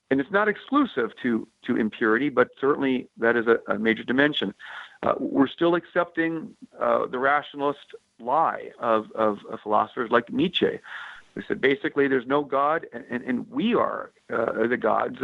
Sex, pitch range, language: male, 140-220 Hz, English